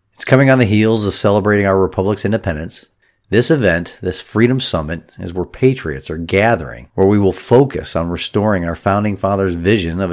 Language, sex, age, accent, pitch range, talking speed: English, male, 50-69, American, 85-110 Hz, 185 wpm